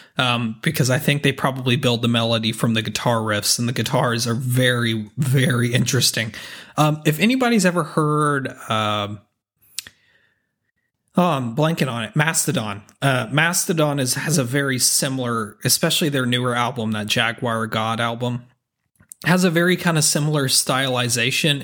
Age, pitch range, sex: 30-49, 120-150 Hz, male